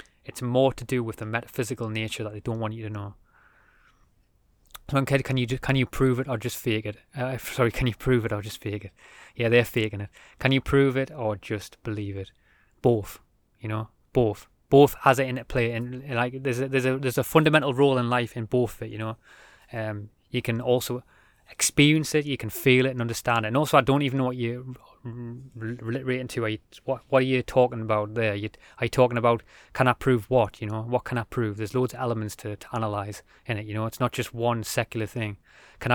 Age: 20-39